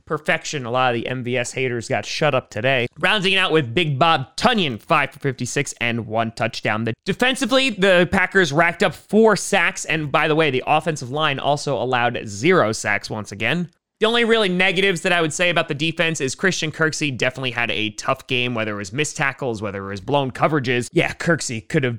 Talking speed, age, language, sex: 210 wpm, 20-39, English, male